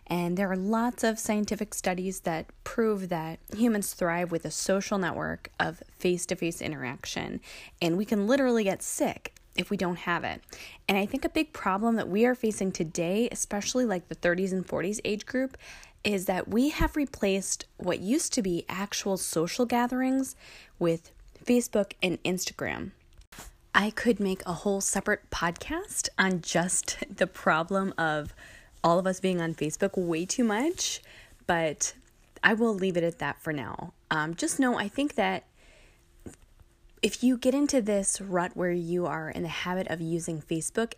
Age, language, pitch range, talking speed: 20-39, English, 175-230 Hz, 170 wpm